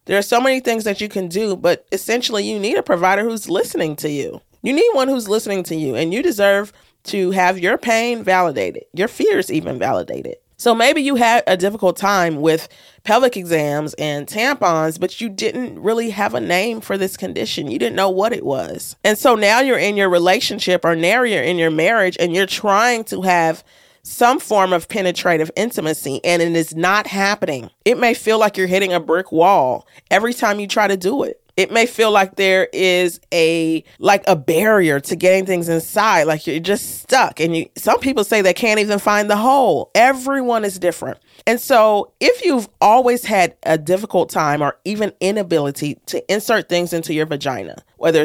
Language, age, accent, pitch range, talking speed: English, 40-59, American, 165-220 Hz, 200 wpm